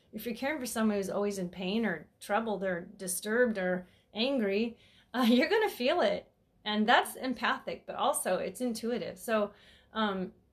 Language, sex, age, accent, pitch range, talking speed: English, female, 30-49, American, 185-230 Hz, 165 wpm